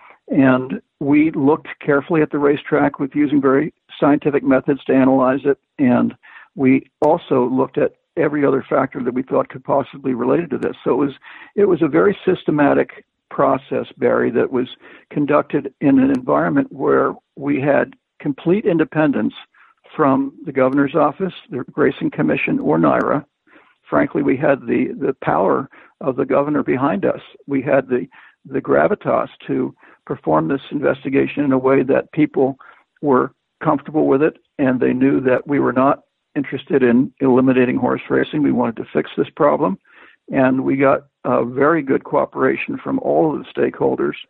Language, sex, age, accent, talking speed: English, male, 60-79, American, 165 wpm